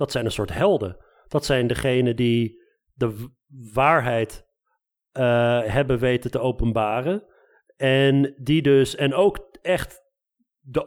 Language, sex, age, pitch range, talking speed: Dutch, male, 40-59, 130-160 Hz, 135 wpm